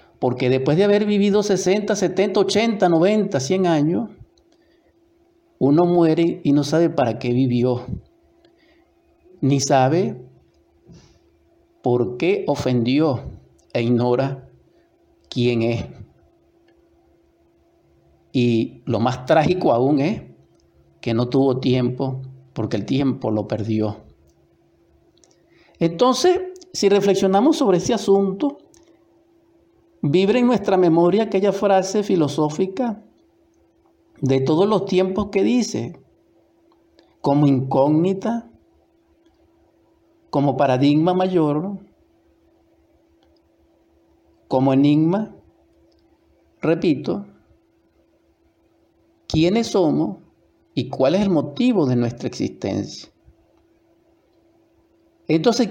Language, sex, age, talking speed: Spanish, male, 50-69, 85 wpm